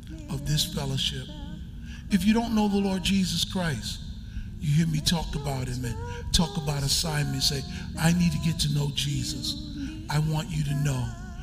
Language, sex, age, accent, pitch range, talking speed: English, male, 60-79, American, 105-160 Hz, 180 wpm